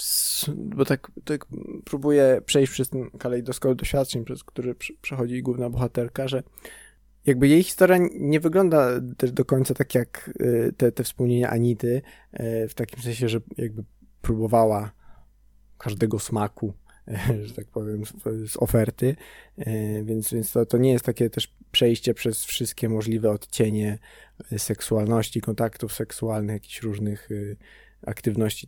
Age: 20-39